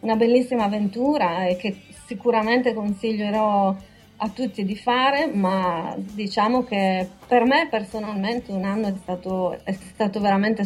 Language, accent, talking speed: Italian, native, 135 wpm